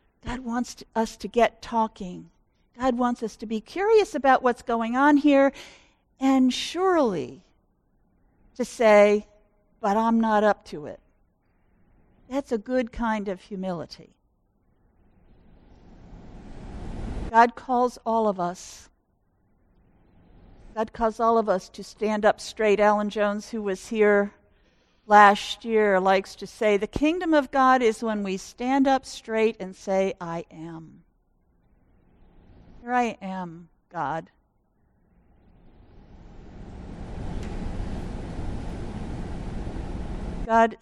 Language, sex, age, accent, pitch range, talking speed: English, female, 50-69, American, 195-245 Hz, 110 wpm